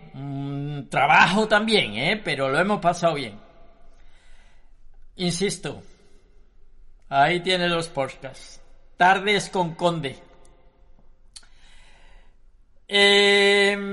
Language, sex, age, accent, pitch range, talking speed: Spanish, male, 50-69, Spanish, 165-215 Hz, 75 wpm